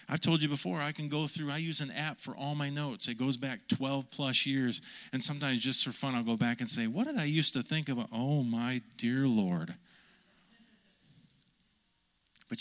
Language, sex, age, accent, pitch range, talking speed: English, male, 40-59, American, 125-165 Hz, 210 wpm